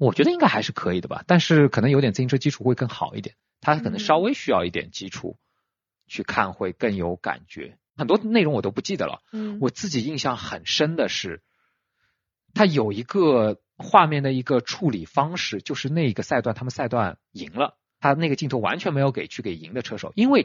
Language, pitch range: Chinese, 115-190 Hz